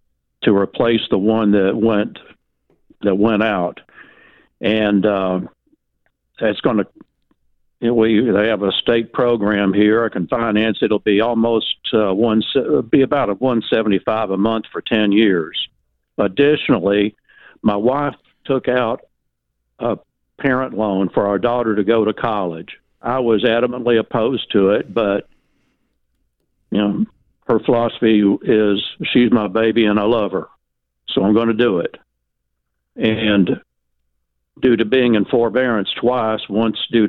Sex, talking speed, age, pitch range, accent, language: male, 145 wpm, 60-79, 95-115 Hz, American, English